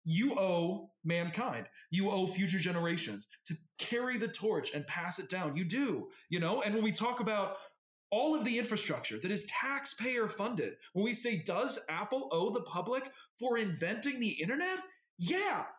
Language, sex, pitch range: English, male, 180-275 Hz